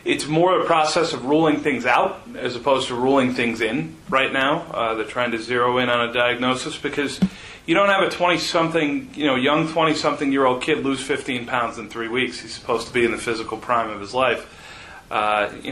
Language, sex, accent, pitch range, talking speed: English, male, American, 120-150 Hz, 210 wpm